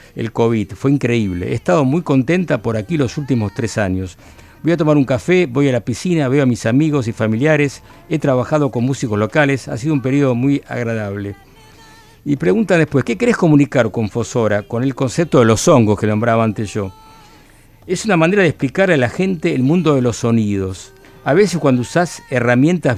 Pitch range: 110-155 Hz